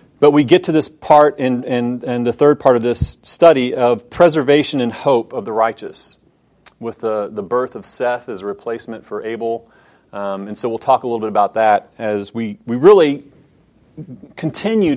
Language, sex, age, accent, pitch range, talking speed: English, male, 40-59, American, 115-145 Hz, 190 wpm